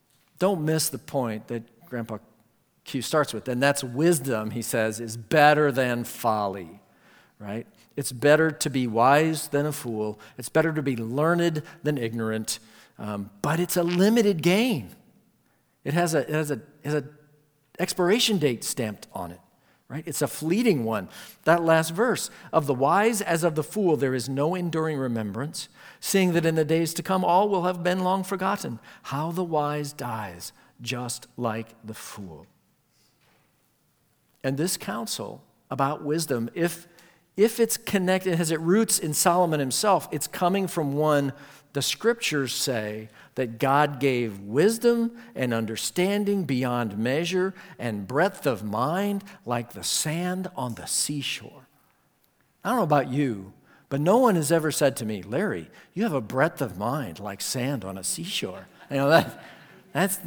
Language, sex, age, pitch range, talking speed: English, male, 50-69, 125-175 Hz, 155 wpm